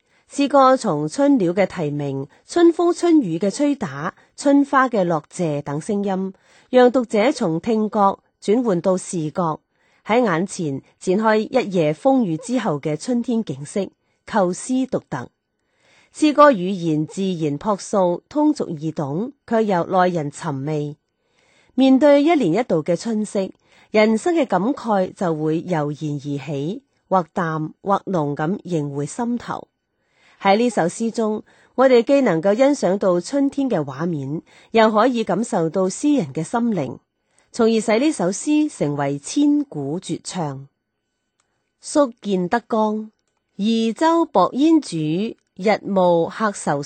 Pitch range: 165-250 Hz